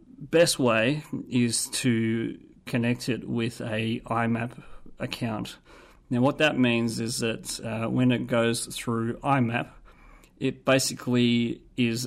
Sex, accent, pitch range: male, Australian, 115-130 Hz